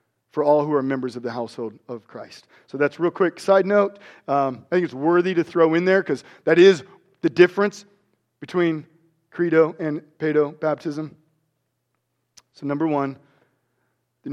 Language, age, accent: English, 40-59, American